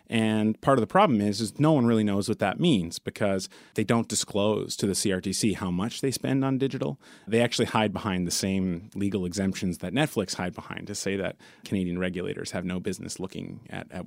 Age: 30-49